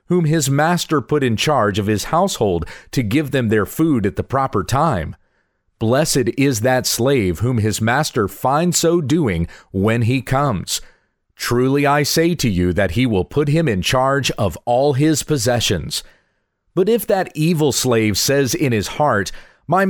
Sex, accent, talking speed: male, American, 170 wpm